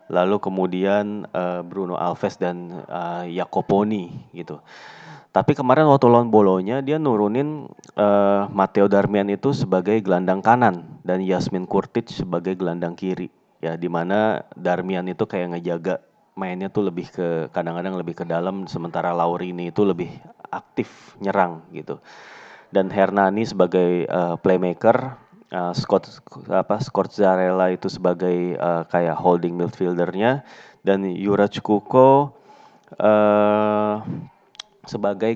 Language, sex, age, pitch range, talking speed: Indonesian, male, 20-39, 90-105 Hz, 120 wpm